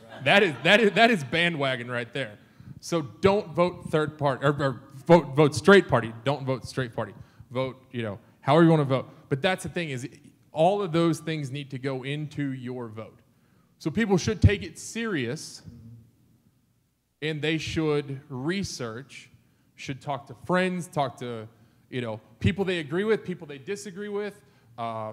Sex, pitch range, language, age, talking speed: male, 120-155 Hz, English, 20-39, 175 wpm